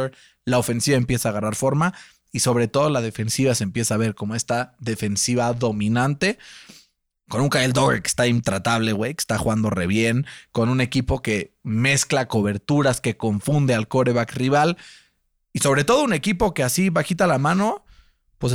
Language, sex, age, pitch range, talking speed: Spanish, male, 30-49, 115-150 Hz, 175 wpm